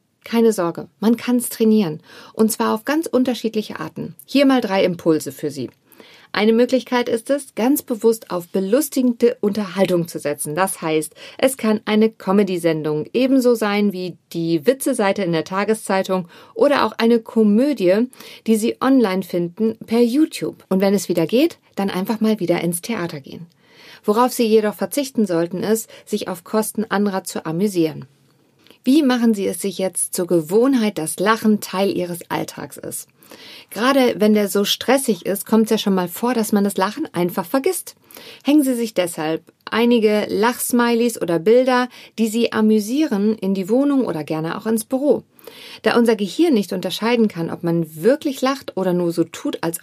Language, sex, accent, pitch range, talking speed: German, female, German, 185-240 Hz, 170 wpm